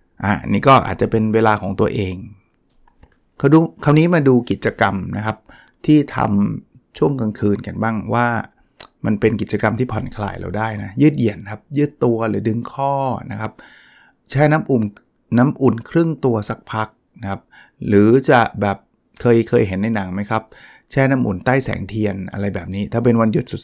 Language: Thai